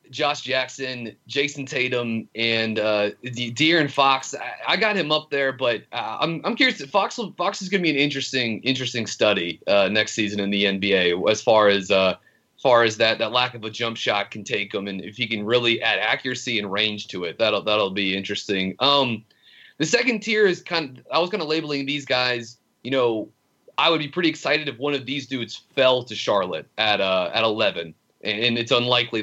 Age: 30-49